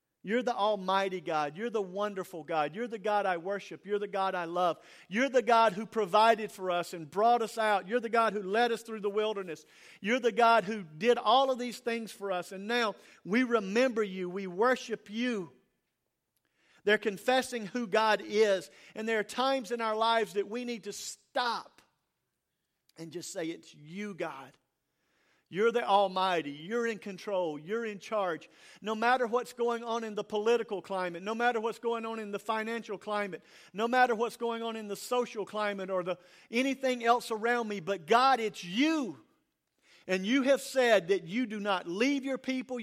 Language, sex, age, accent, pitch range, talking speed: English, male, 50-69, American, 195-235 Hz, 190 wpm